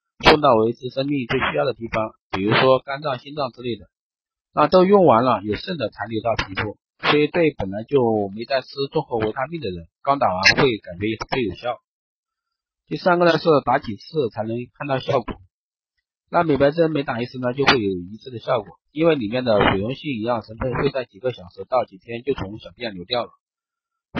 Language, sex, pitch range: Chinese, male, 110-140 Hz